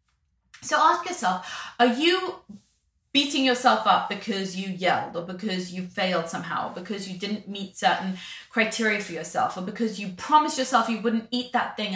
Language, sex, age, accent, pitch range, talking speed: English, female, 20-39, British, 185-245 Hz, 170 wpm